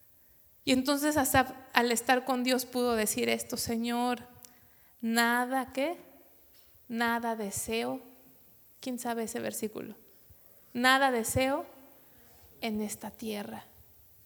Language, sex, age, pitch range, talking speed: English, female, 30-49, 215-270 Hz, 100 wpm